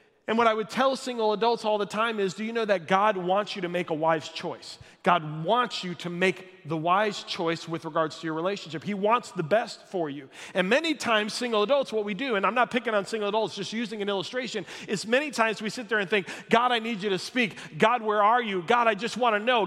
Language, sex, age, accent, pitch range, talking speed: English, male, 30-49, American, 185-240 Hz, 260 wpm